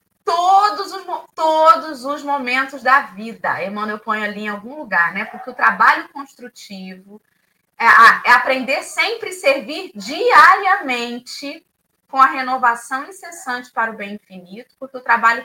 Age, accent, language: 20-39, Brazilian, Portuguese